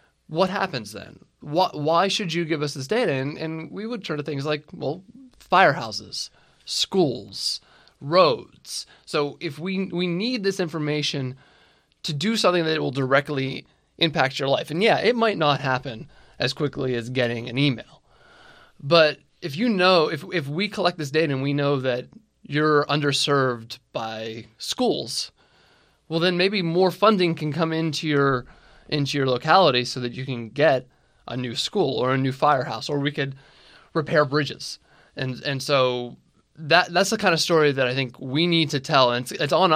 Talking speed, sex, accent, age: 175 wpm, male, American, 20-39